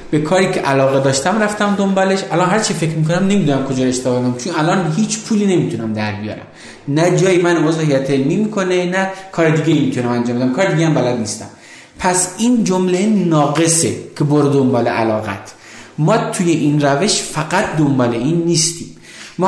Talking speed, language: 175 wpm, Persian